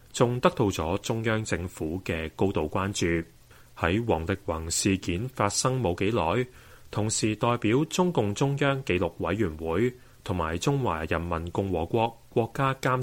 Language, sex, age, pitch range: Chinese, male, 30-49, 85-120 Hz